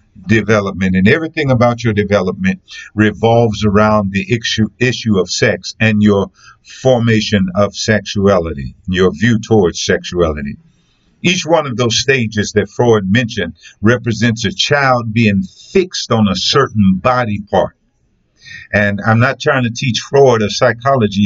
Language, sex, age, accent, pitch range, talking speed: English, male, 50-69, American, 105-140 Hz, 140 wpm